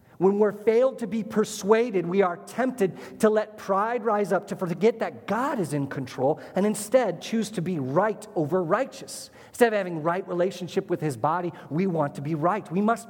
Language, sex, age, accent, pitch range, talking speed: English, male, 40-59, American, 130-185 Hz, 205 wpm